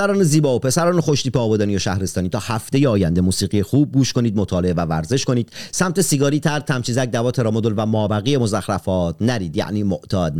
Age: 40-59